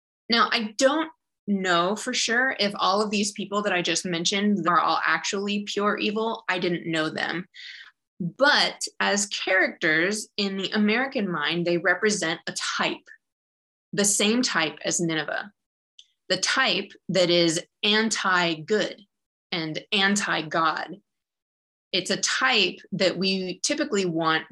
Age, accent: 20-39, American